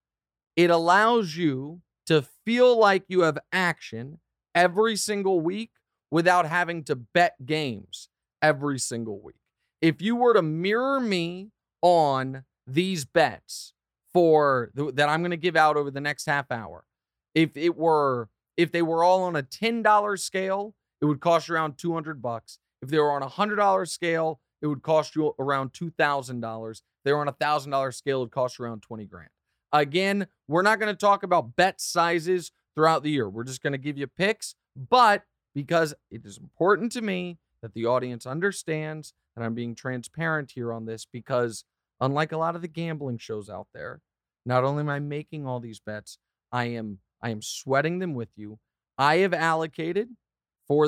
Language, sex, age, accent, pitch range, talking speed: English, male, 40-59, American, 130-175 Hz, 180 wpm